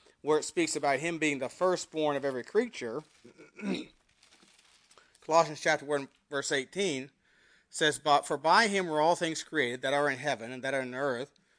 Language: English